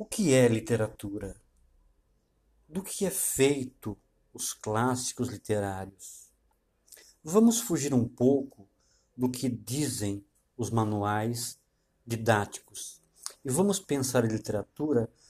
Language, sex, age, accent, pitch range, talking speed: Portuguese, male, 50-69, Brazilian, 100-130 Hz, 100 wpm